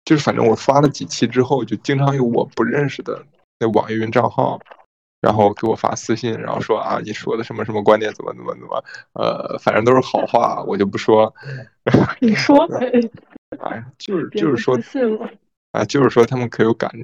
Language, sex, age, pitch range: Chinese, male, 20-39, 110-135 Hz